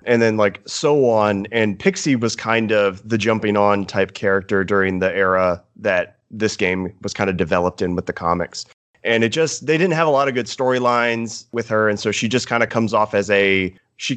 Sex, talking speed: male, 225 wpm